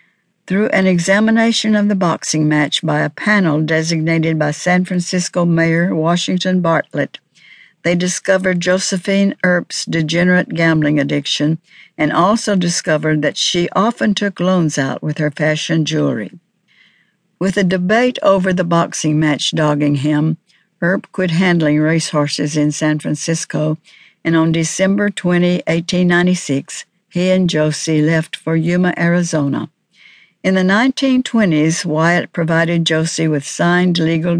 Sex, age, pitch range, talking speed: female, 60-79, 155-185 Hz, 130 wpm